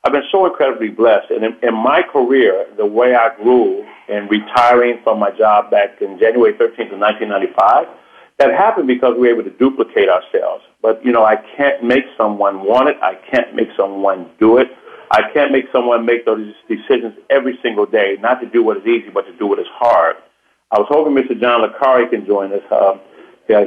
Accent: American